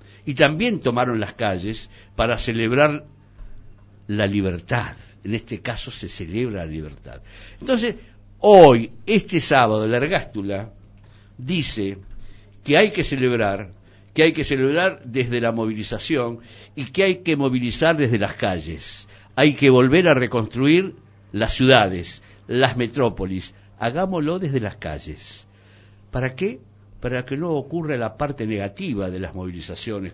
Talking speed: 135 wpm